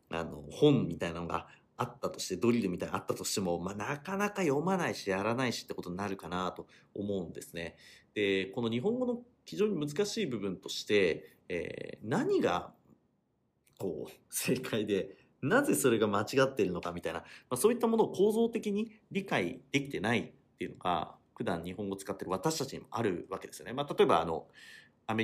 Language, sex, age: Japanese, male, 40-59